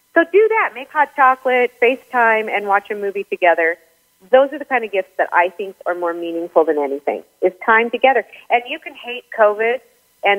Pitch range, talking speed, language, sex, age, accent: 185-240 Hz, 200 wpm, English, female, 40-59, American